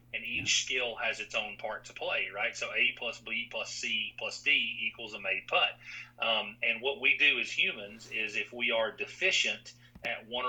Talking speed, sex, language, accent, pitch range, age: 205 wpm, male, English, American, 110-120 Hz, 40-59